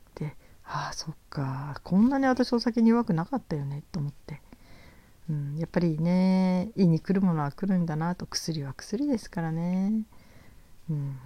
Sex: female